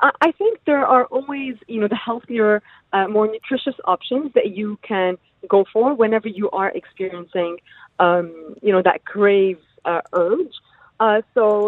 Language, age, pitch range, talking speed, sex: English, 30-49, 180-225 Hz, 155 wpm, female